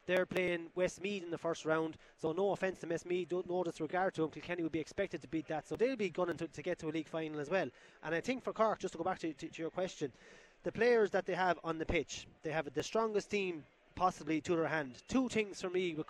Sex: male